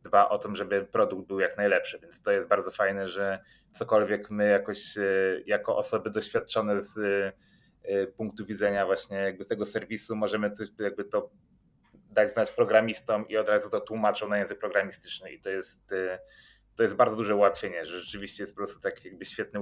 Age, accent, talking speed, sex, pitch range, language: 30-49, native, 175 wpm, male, 100-110 Hz, Polish